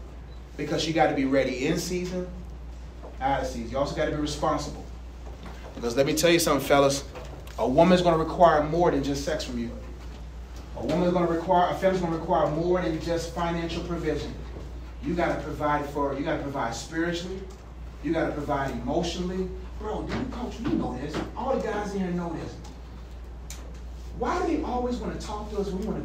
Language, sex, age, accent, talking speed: English, male, 30-49, American, 185 wpm